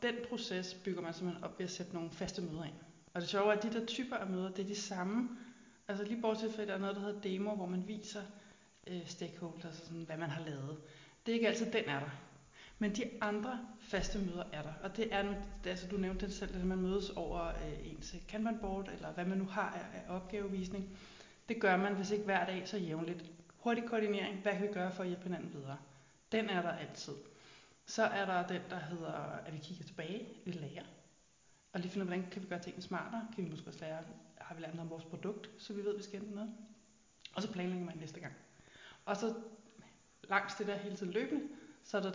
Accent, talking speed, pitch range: native, 235 wpm, 175-210 Hz